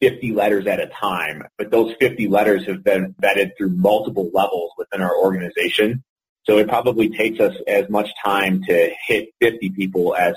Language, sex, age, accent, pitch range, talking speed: English, male, 30-49, American, 95-110 Hz, 180 wpm